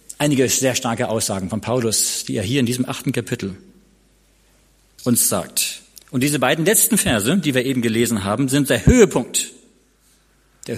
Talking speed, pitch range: 160 wpm, 120-180 Hz